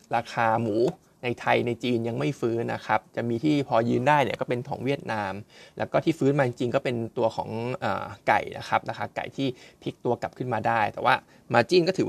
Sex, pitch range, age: male, 115-140 Hz, 20-39